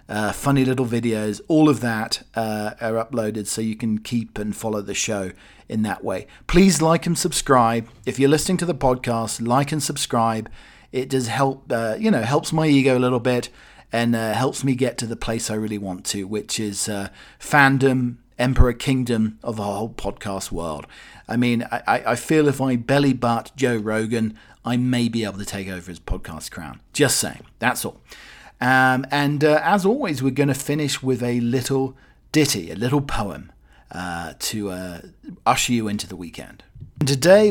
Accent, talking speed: British, 190 wpm